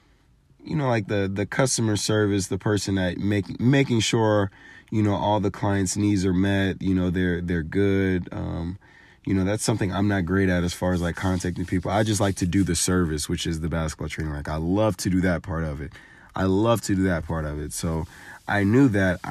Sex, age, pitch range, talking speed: male, 30-49, 85-100 Hz, 230 wpm